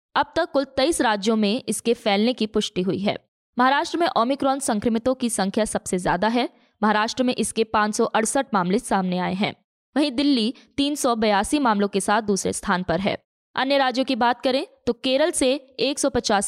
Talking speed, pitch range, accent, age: 175 wpm, 215-280 Hz, native, 20-39